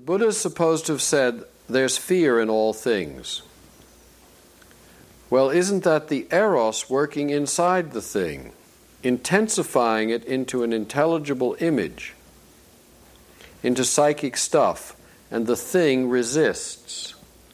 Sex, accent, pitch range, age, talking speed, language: male, American, 110-145 Hz, 60-79, 115 wpm, English